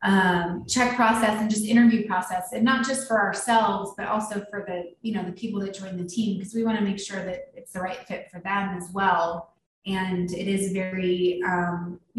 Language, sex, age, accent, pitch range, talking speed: English, female, 20-39, American, 180-205 Hz, 215 wpm